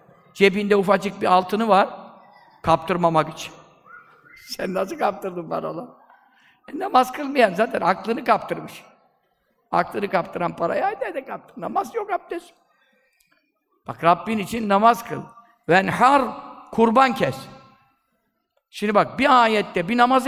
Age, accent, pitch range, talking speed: 50-69, native, 195-280 Hz, 115 wpm